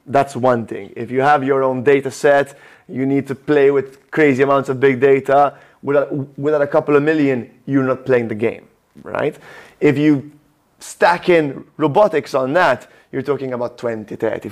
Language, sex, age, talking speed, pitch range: English, male, 30-49, 180 wpm, 120-140 Hz